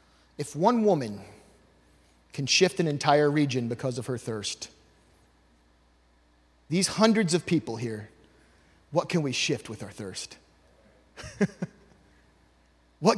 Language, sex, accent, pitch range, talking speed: English, male, American, 130-190 Hz, 115 wpm